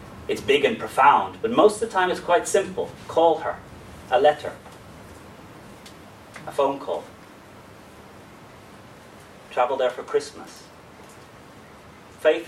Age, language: 30-49, English